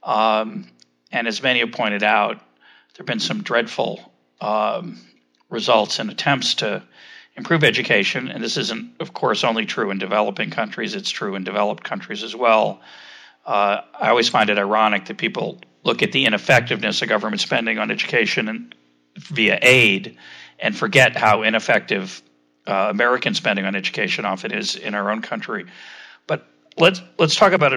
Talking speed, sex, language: 160 wpm, male, English